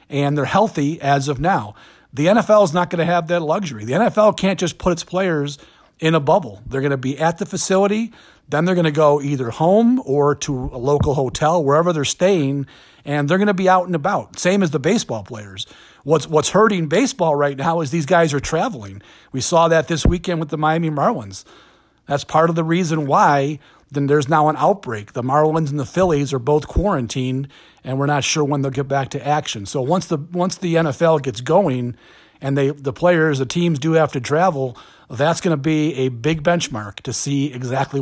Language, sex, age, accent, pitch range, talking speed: English, male, 40-59, American, 135-170 Hz, 215 wpm